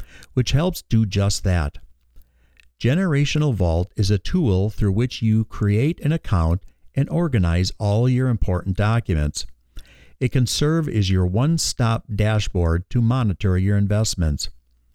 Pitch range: 85-125 Hz